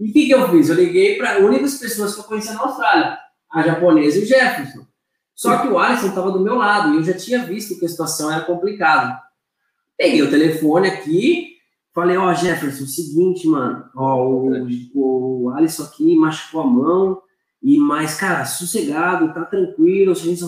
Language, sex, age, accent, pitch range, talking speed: Portuguese, male, 20-39, Brazilian, 175-250 Hz, 210 wpm